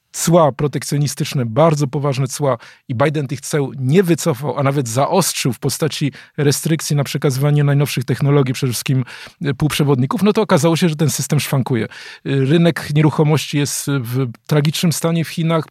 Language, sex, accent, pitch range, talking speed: Polish, male, native, 140-165 Hz, 155 wpm